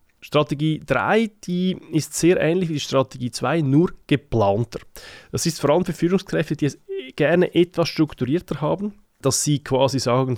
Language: German